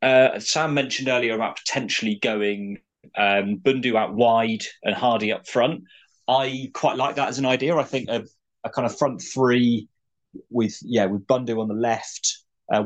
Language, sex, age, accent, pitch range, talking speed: English, male, 30-49, British, 100-120 Hz, 175 wpm